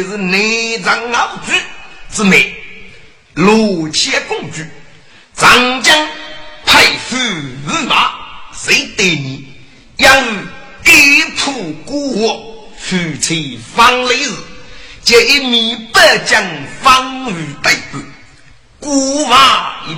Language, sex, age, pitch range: Chinese, male, 50-69, 160-260 Hz